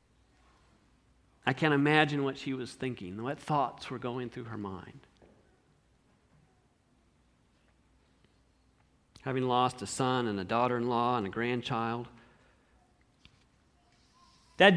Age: 50-69